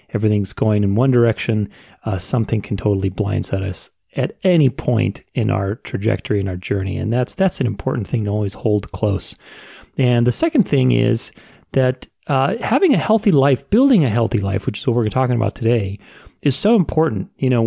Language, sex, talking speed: English, male, 195 wpm